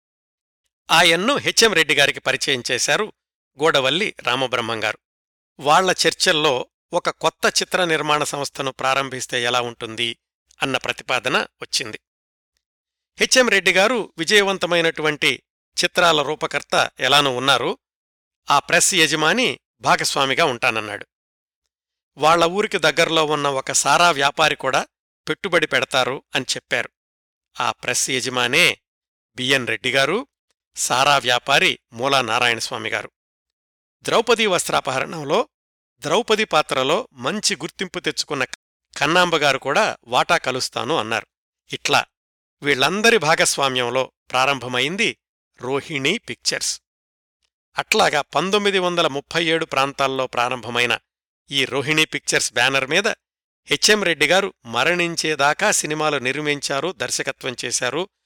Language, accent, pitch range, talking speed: Telugu, native, 130-170 Hz, 90 wpm